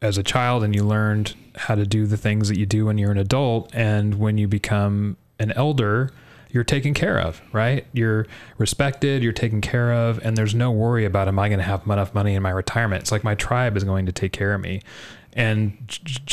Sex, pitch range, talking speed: male, 100-115 Hz, 230 wpm